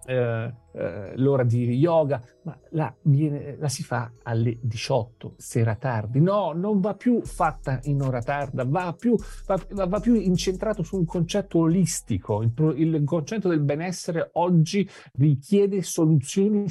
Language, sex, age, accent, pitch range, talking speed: Italian, male, 50-69, native, 125-185 Hz, 155 wpm